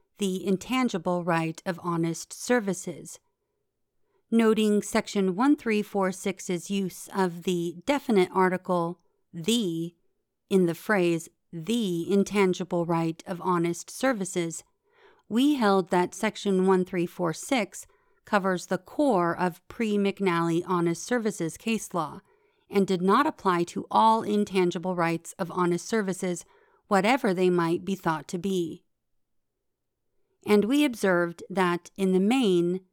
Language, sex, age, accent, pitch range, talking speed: English, female, 40-59, American, 175-220 Hz, 115 wpm